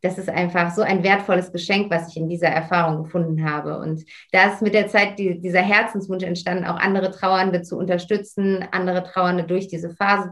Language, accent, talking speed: German, German, 190 wpm